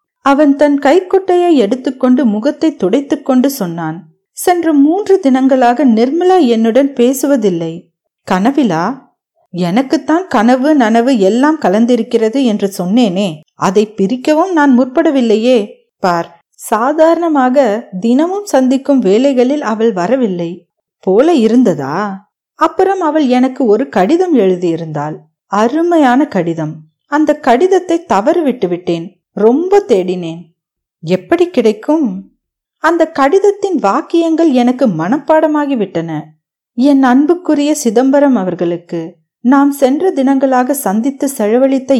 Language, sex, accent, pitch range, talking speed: Tamil, female, native, 205-300 Hz, 95 wpm